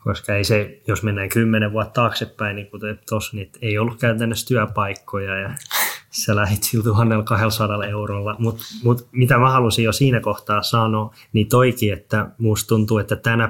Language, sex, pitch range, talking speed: Finnish, male, 105-115 Hz, 160 wpm